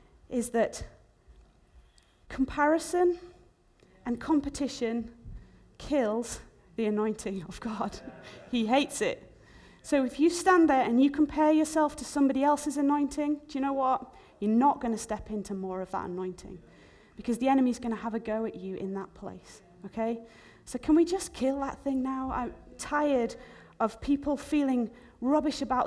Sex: female